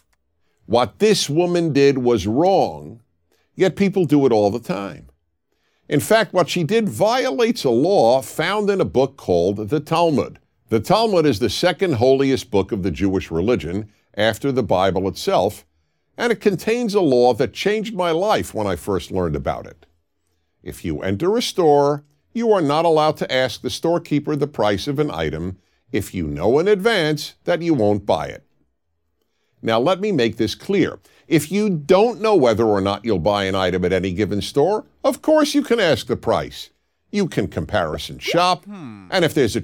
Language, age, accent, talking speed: English, 50-69, American, 185 wpm